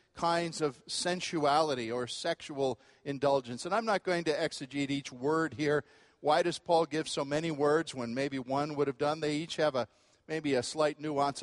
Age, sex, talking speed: 50-69, male, 190 wpm